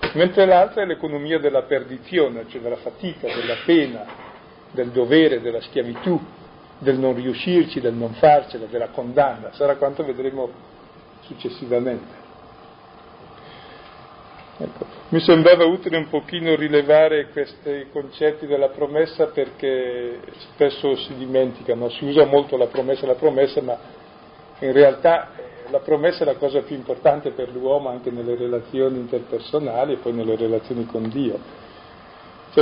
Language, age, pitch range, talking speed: Italian, 50-69, 130-160 Hz, 130 wpm